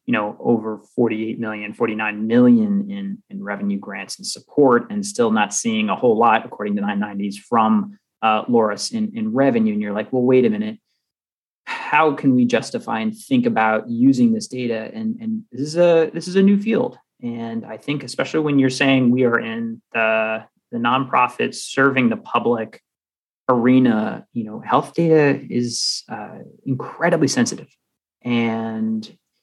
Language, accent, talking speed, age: English, American, 165 wpm, 30-49